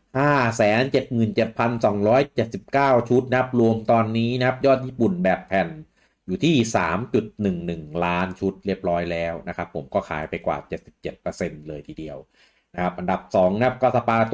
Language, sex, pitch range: English, male, 90-120 Hz